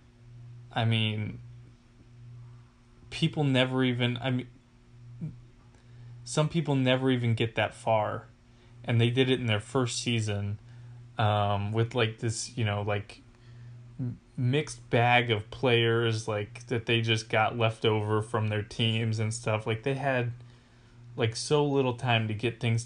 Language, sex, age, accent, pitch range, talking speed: English, male, 20-39, American, 110-120 Hz, 145 wpm